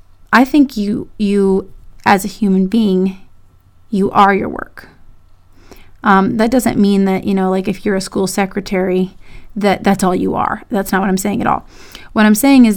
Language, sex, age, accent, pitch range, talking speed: English, female, 30-49, American, 190-230 Hz, 195 wpm